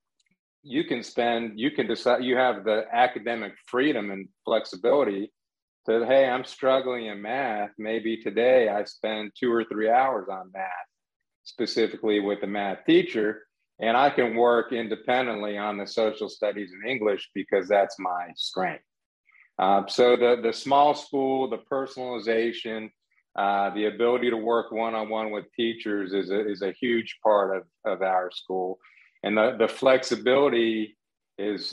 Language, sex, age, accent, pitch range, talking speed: English, male, 40-59, American, 105-120 Hz, 150 wpm